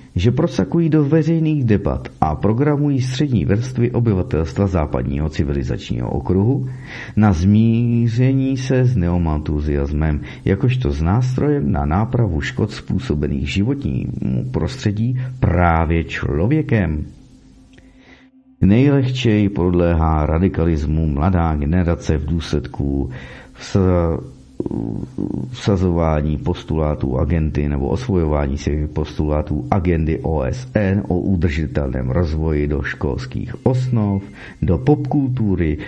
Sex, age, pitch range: male, 50-69, 75-120 Hz